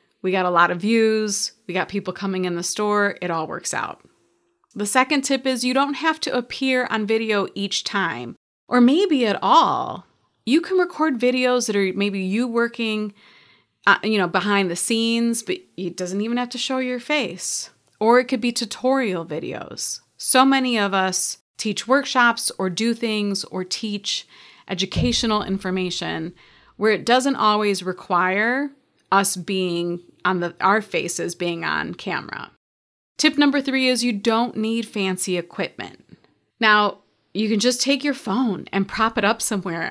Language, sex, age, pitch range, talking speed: English, female, 30-49, 190-255 Hz, 170 wpm